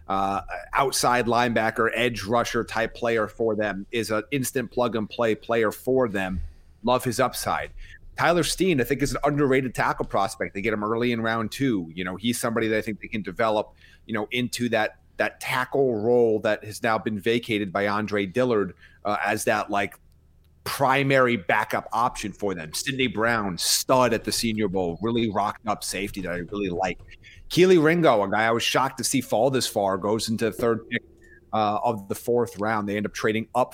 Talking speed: 200 wpm